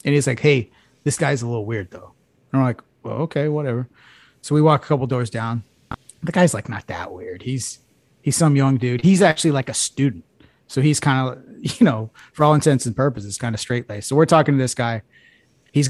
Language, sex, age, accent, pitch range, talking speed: English, male, 30-49, American, 120-160 Hz, 230 wpm